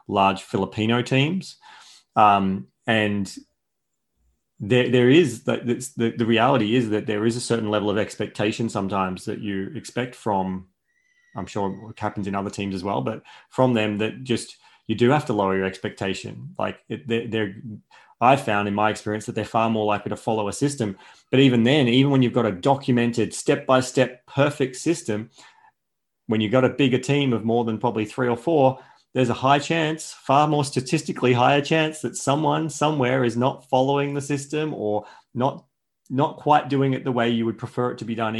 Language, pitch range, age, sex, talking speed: English, 105-130 Hz, 30-49, male, 190 wpm